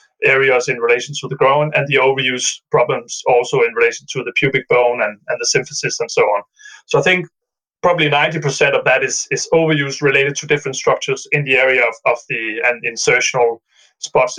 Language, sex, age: English, male, 30-49